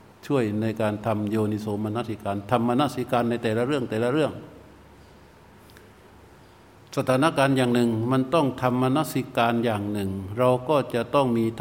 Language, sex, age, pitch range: Thai, male, 60-79, 105-130 Hz